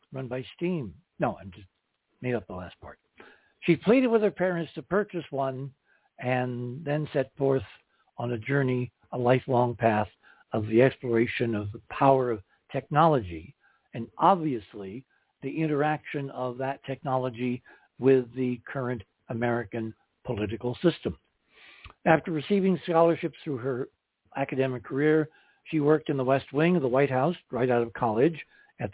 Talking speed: 150 wpm